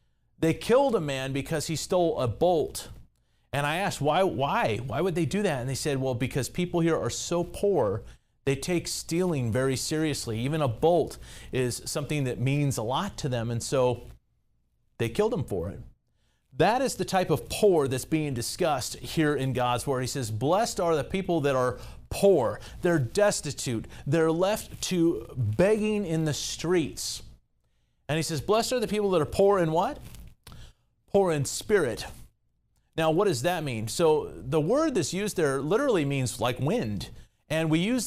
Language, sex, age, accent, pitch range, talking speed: English, male, 40-59, American, 135-190 Hz, 185 wpm